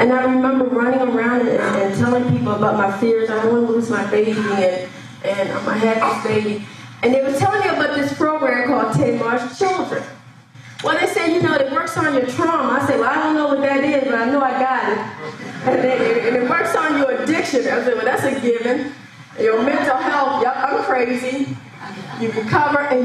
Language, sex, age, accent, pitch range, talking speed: English, female, 30-49, American, 230-295 Hz, 215 wpm